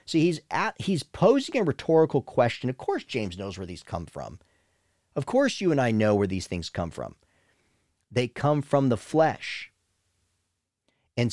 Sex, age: male, 40-59